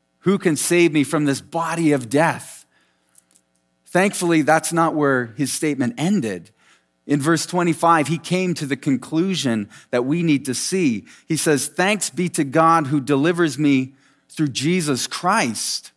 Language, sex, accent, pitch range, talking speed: English, male, American, 115-165 Hz, 155 wpm